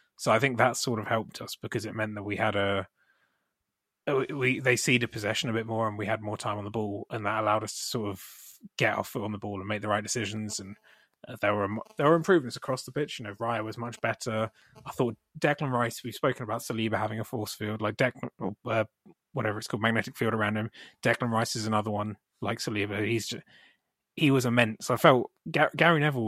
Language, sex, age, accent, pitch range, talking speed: English, male, 20-39, British, 105-130 Hz, 235 wpm